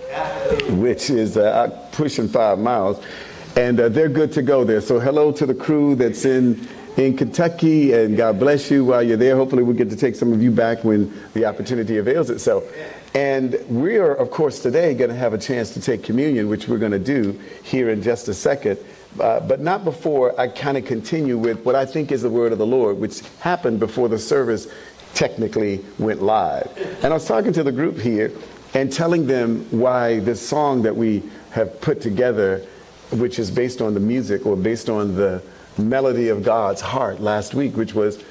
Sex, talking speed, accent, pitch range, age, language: male, 205 wpm, American, 110-135 Hz, 50-69, English